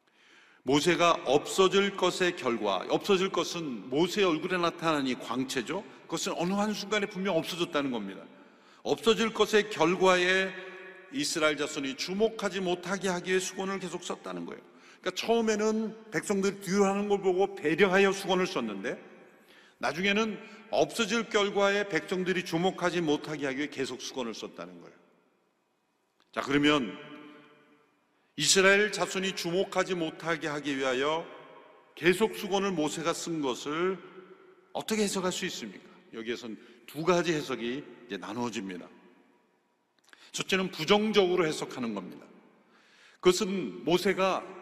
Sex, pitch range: male, 160-200 Hz